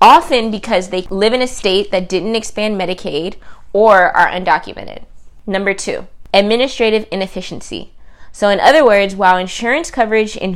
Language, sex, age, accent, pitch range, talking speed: English, female, 20-39, American, 180-220 Hz, 150 wpm